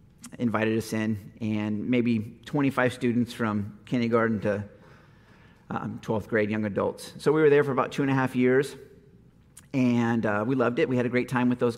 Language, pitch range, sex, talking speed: English, 115-130 Hz, male, 195 wpm